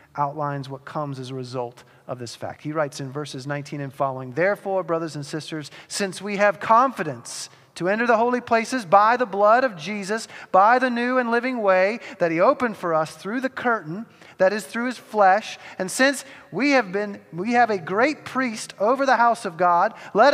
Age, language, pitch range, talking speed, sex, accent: 40-59, English, 150-230 Hz, 205 wpm, male, American